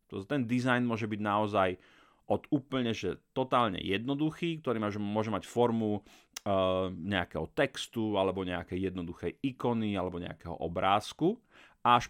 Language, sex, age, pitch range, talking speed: Slovak, male, 30-49, 95-130 Hz, 125 wpm